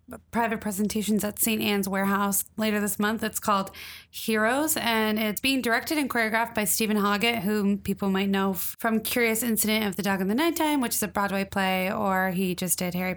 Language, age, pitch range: English, 20-39, 190-225 Hz